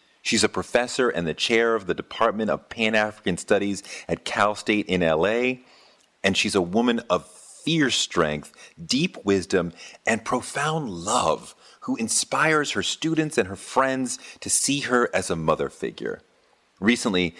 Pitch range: 90-125 Hz